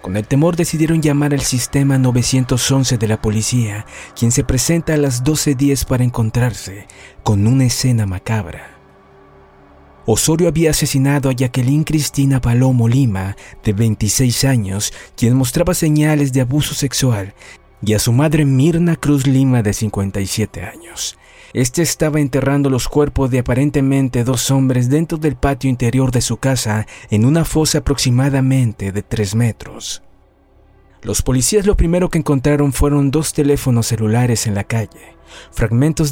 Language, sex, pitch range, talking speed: Spanish, male, 115-145 Hz, 145 wpm